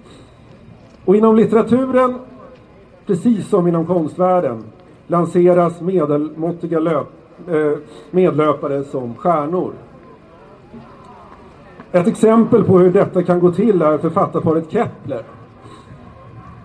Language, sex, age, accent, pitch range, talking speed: Swedish, male, 50-69, native, 150-185 Hz, 85 wpm